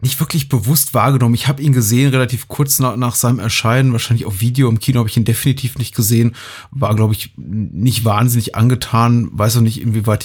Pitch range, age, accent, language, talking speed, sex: 110-130 Hz, 30-49, German, German, 205 wpm, male